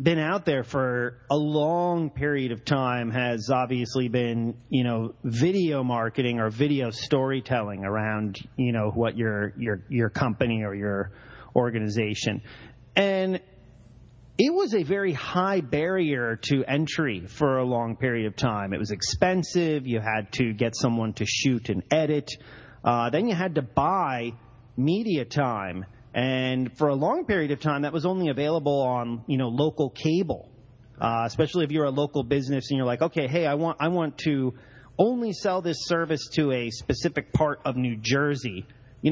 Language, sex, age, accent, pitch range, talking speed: English, male, 30-49, American, 120-155 Hz, 170 wpm